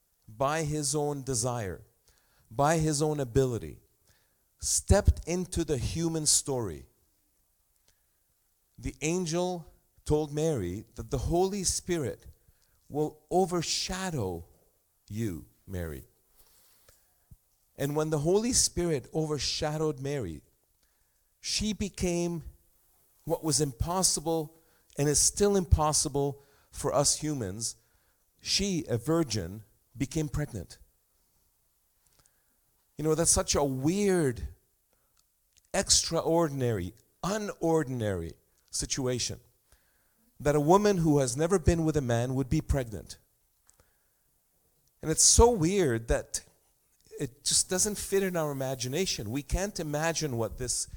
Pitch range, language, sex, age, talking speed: 115-165 Hz, English, male, 40-59, 105 wpm